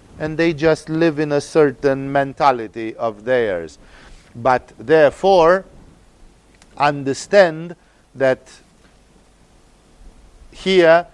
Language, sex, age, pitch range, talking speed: English, male, 50-69, 130-170 Hz, 80 wpm